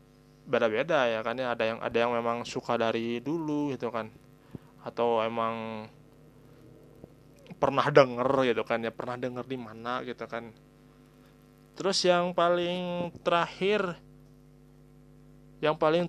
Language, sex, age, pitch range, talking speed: Indonesian, male, 20-39, 120-145 Hz, 120 wpm